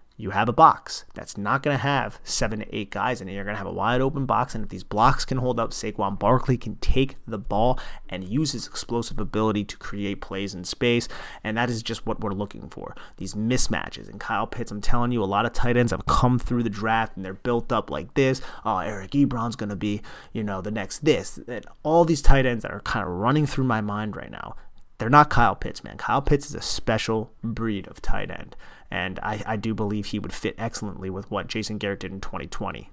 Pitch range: 105-130 Hz